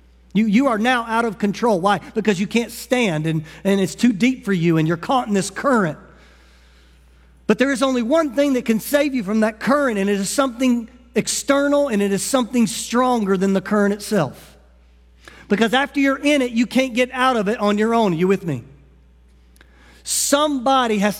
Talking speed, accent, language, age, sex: 205 wpm, American, English, 50-69, male